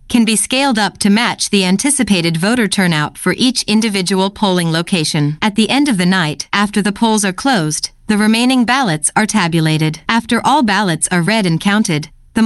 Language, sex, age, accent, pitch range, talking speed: English, female, 40-59, American, 175-230 Hz, 190 wpm